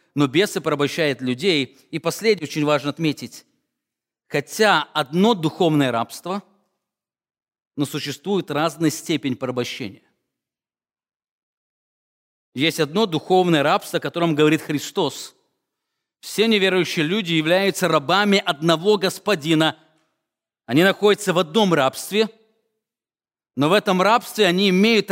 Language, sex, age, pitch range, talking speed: English, male, 40-59, 150-195 Hz, 105 wpm